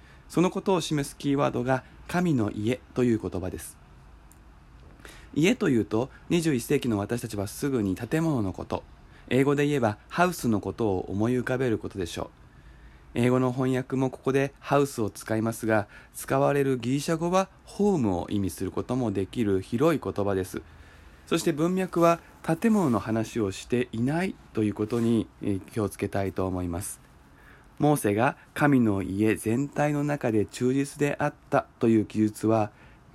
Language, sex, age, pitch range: Japanese, male, 20-39, 100-135 Hz